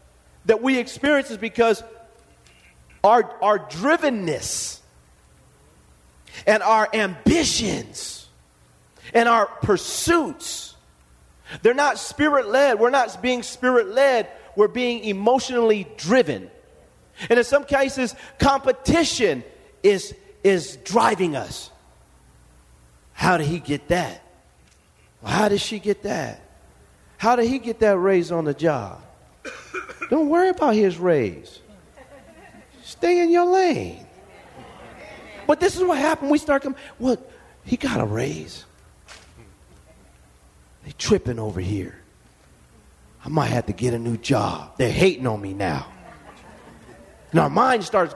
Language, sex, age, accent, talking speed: English, male, 40-59, American, 120 wpm